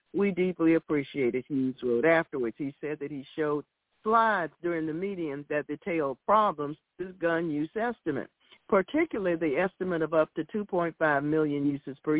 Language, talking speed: English, 160 wpm